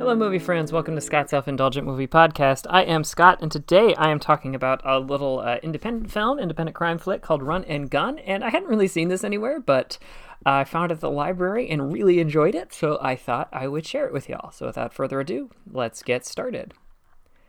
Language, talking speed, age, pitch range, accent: English, 220 wpm, 30-49, 125-180 Hz, American